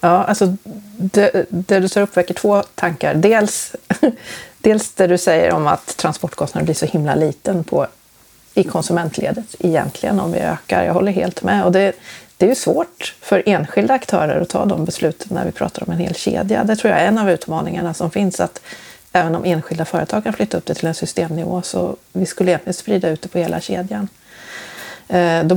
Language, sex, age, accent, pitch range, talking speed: Swedish, female, 40-59, native, 175-205 Hz, 200 wpm